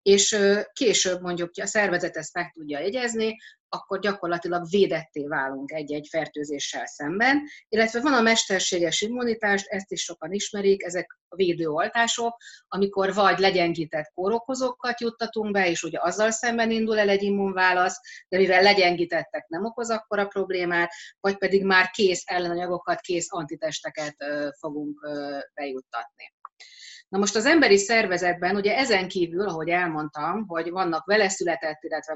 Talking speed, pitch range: 140 wpm, 170-220 Hz